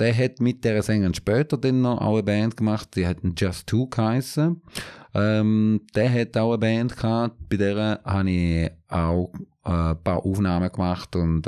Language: English